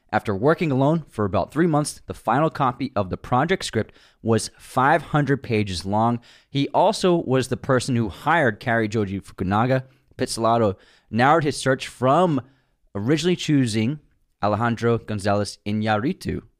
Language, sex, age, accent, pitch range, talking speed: English, male, 20-39, American, 100-130 Hz, 135 wpm